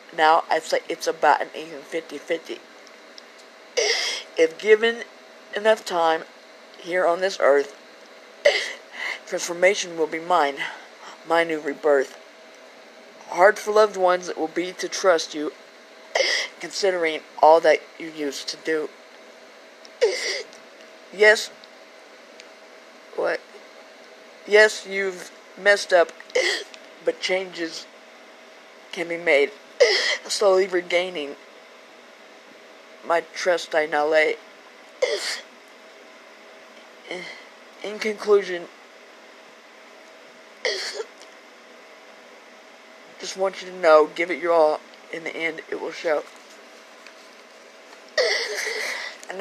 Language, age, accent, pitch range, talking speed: English, 50-69, American, 155-215 Hz, 95 wpm